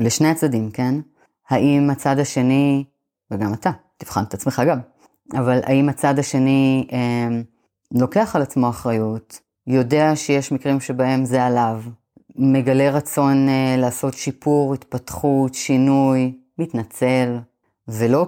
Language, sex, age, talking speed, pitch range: Hebrew, female, 30-49, 120 wpm, 125-150 Hz